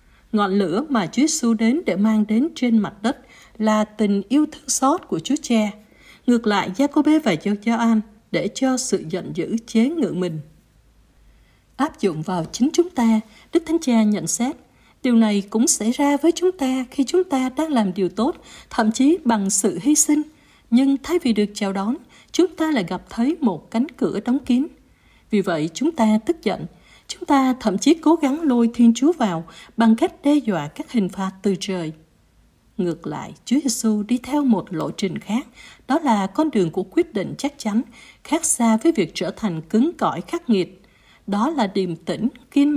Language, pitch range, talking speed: Vietnamese, 200-275 Hz, 200 wpm